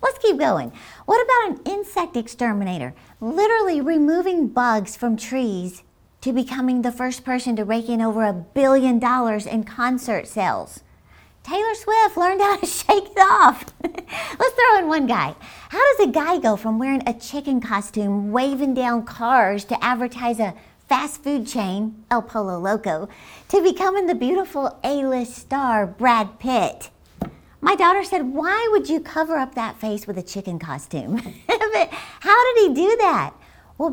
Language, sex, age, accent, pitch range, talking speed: English, female, 50-69, American, 215-340 Hz, 160 wpm